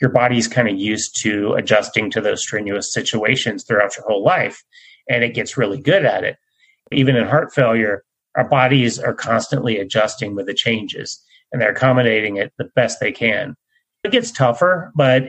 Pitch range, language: 110-140 Hz, English